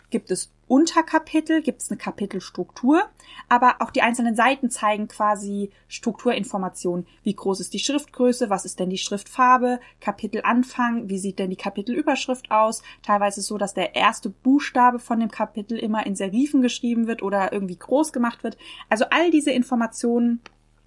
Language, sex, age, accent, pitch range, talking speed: German, female, 20-39, German, 205-265 Hz, 165 wpm